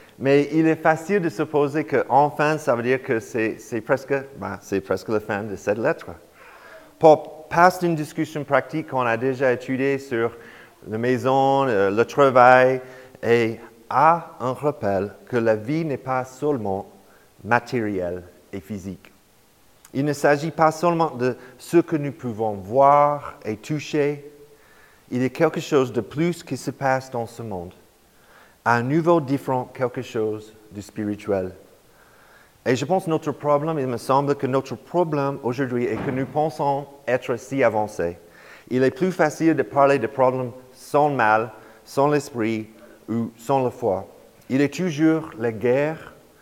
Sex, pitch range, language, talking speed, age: male, 110-150 Hz, French, 160 wpm, 40-59